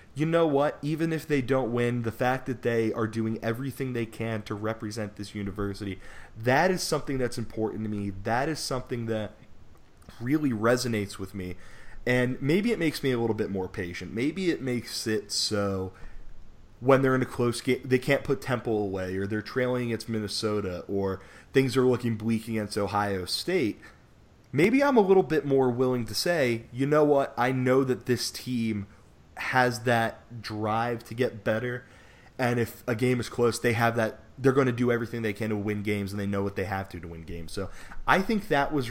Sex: male